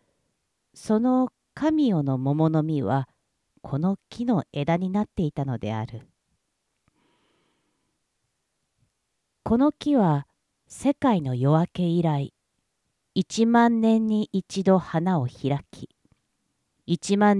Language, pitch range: Japanese, 155-215 Hz